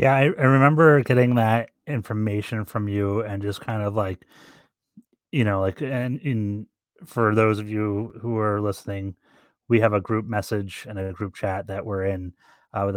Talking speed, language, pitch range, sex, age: 190 wpm, English, 95-110 Hz, male, 30-49